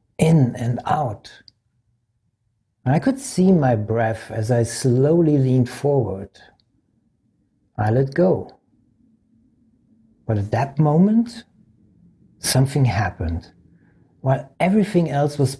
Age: 60-79